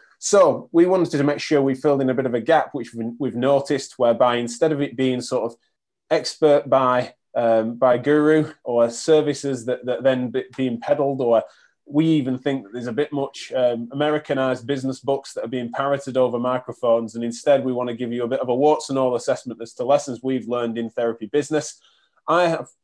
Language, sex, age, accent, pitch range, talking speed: English, male, 20-39, British, 120-145 Hz, 215 wpm